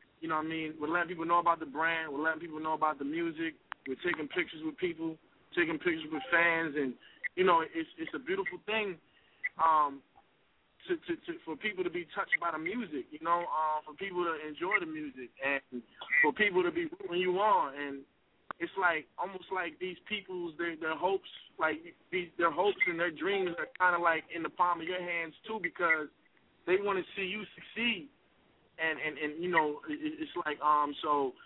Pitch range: 155-190 Hz